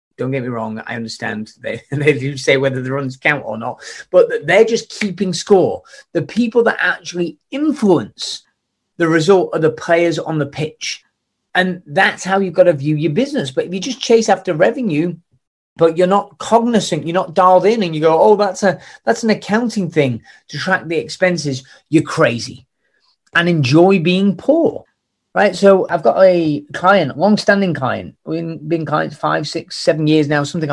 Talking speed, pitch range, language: 185 wpm, 140-195 Hz, English